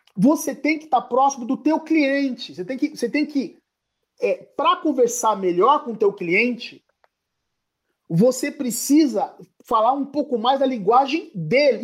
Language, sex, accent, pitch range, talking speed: Portuguese, male, Brazilian, 230-355 Hz, 145 wpm